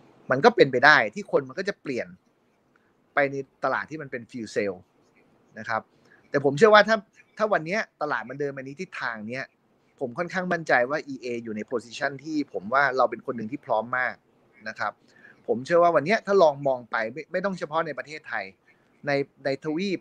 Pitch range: 130-175 Hz